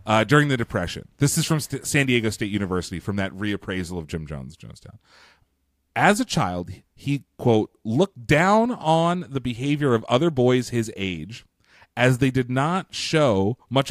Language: English